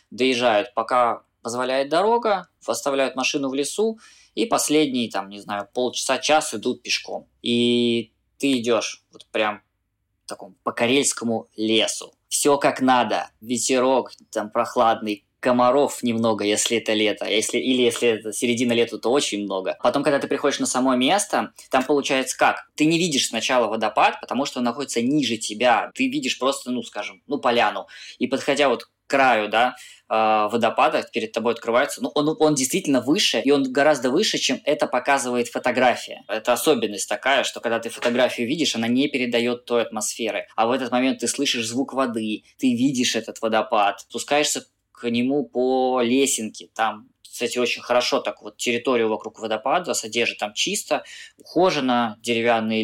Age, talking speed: 20-39, 160 wpm